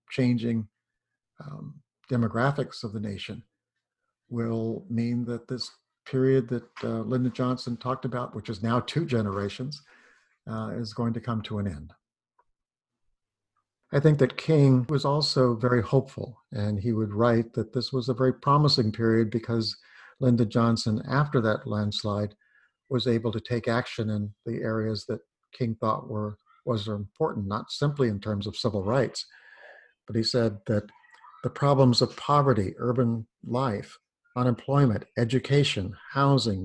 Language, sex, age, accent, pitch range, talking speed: English, male, 50-69, American, 110-125 Hz, 145 wpm